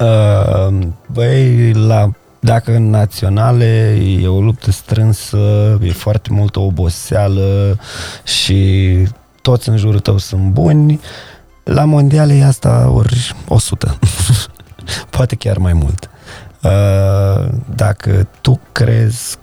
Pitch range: 100-125 Hz